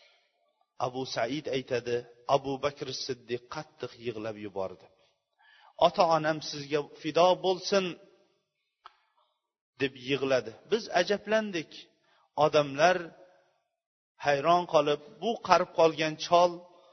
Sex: male